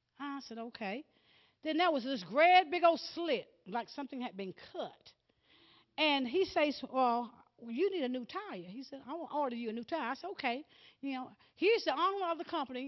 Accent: American